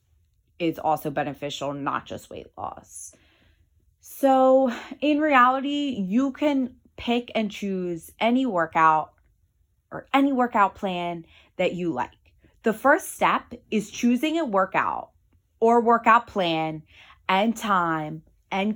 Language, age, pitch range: English, 20-39, 160-215 Hz